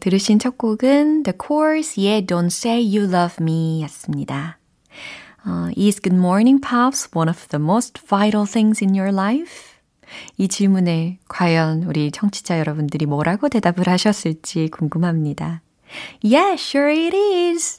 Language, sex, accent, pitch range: Korean, female, native, 160-225 Hz